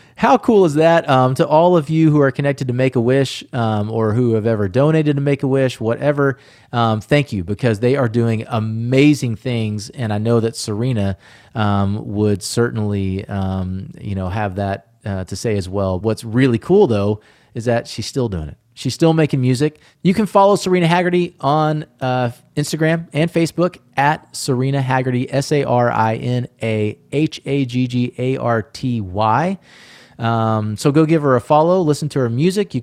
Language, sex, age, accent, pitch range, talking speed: English, male, 30-49, American, 105-140 Hz, 165 wpm